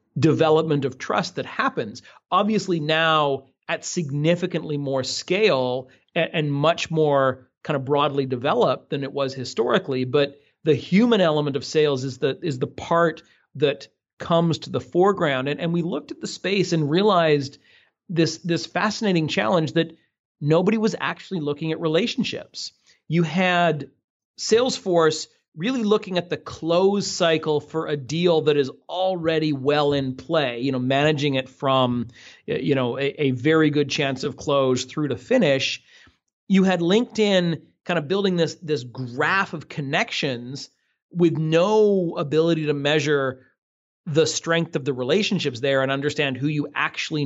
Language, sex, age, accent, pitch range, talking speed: English, male, 40-59, American, 140-170 Hz, 155 wpm